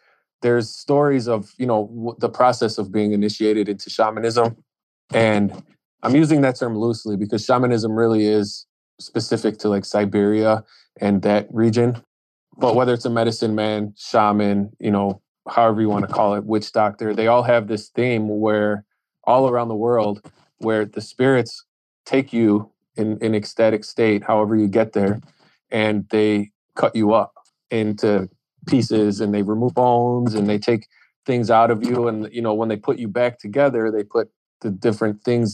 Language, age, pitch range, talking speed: English, 20-39, 105-115 Hz, 170 wpm